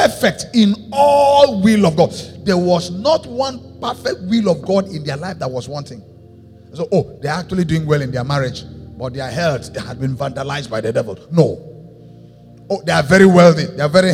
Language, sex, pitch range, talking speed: English, male, 120-195 Hz, 210 wpm